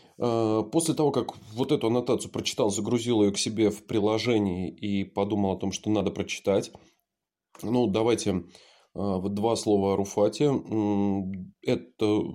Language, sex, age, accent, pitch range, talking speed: Russian, male, 20-39, native, 100-125 Hz, 130 wpm